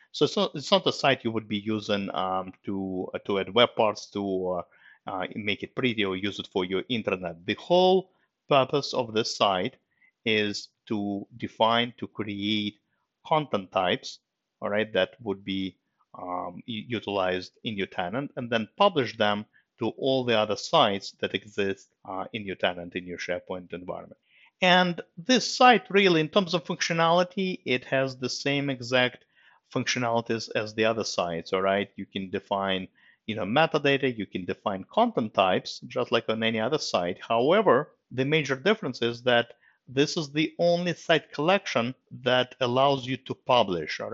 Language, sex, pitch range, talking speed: English, male, 105-140 Hz, 170 wpm